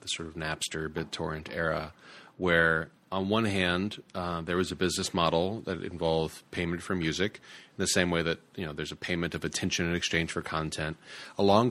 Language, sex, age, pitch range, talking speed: English, male, 30-49, 85-100 Hz, 195 wpm